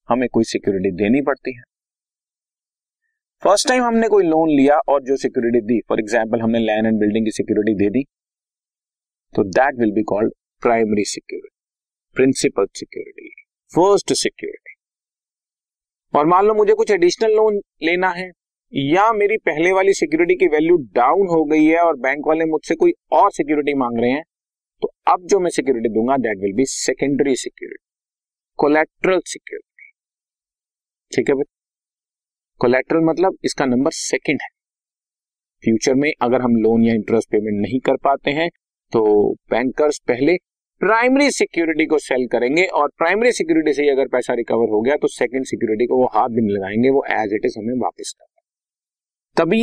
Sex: male